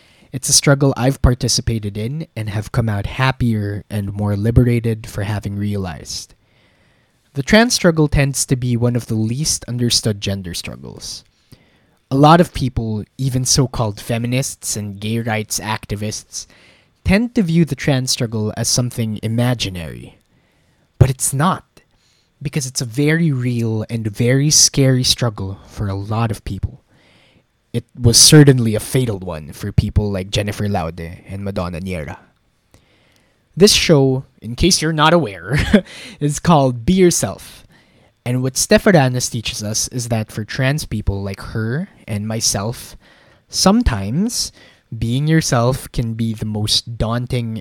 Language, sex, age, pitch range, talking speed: English, male, 20-39, 105-135 Hz, 145 wpm